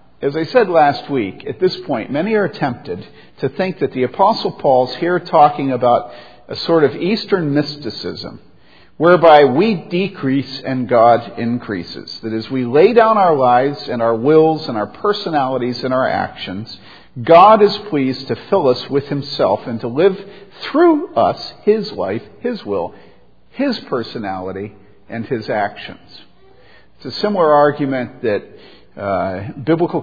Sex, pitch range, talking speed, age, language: male, 125-170 Hz, 150 wpm, 50-69, English